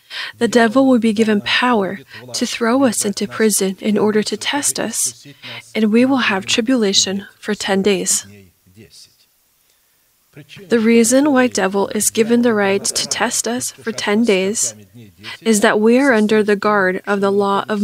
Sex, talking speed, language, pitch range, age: female, 165 wpm, English, 190-230 Hz, 20-39